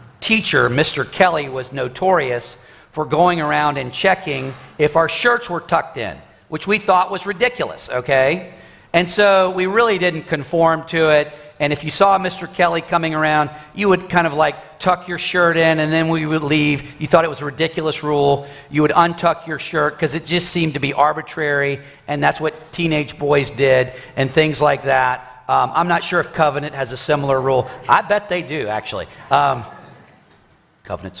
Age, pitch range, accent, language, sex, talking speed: 50-69, 140-185 Hz, American, English, male, 185 wpm